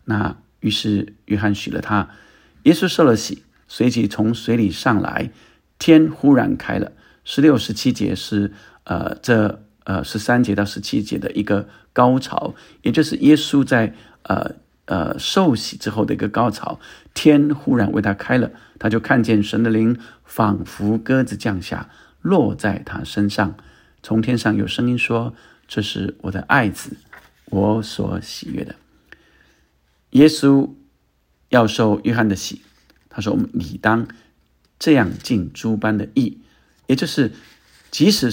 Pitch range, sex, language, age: 100-125 Hz, male, Chinese, 50-69